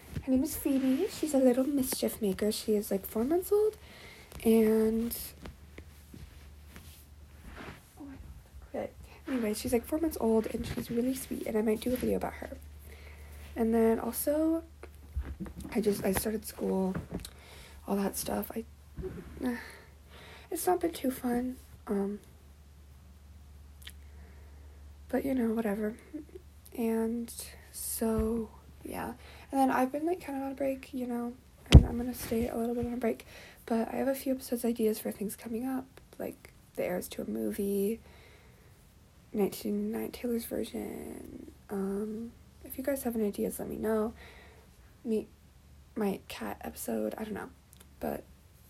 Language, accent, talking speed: English, American, 145 wpm